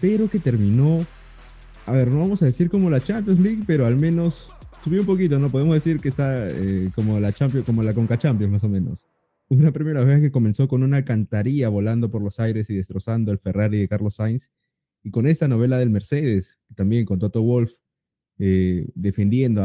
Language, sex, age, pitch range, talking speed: Spanish, male, 30-49, 105-145 Hz, 200 wpm